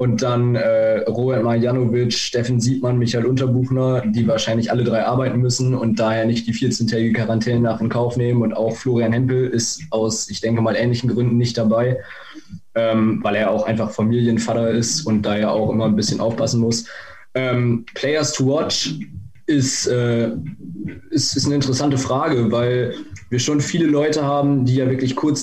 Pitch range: 115-130 Hz